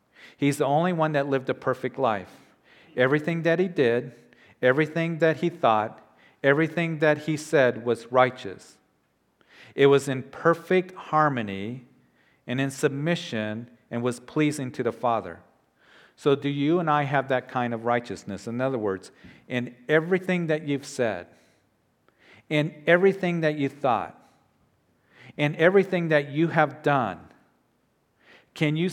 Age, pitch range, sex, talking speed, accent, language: 50-69, 125-155 Hz, male, 140 wpm, American, English